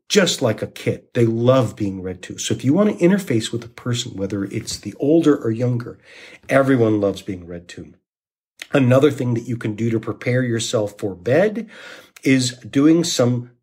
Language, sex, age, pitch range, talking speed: English, male, 50-69, 110-140 Hz, 190 wpm